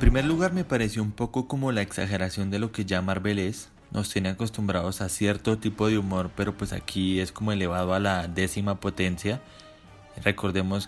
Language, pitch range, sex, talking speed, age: Spanish, 95-110 Hz, male, 195 wpm, 20-39